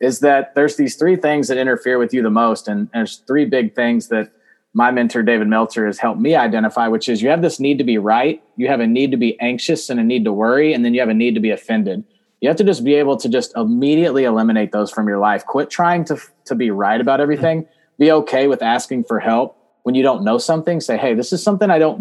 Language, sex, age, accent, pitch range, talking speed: English, male, 20-39, American, 120-165 Hz, 260 wpm